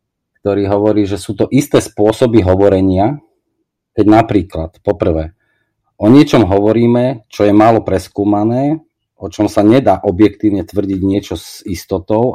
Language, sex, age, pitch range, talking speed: Slovak, male, 40-59, 85-110 Hz, 130 wpm